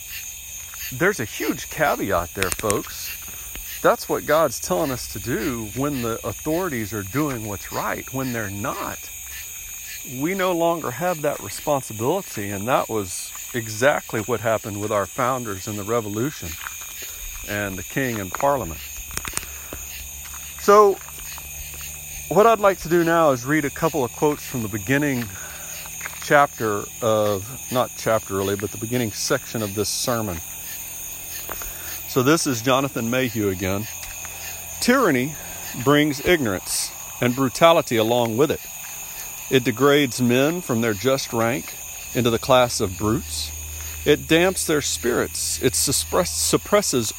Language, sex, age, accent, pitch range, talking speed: English, male, 40-59, American, 85-130 Hz, 135 wpm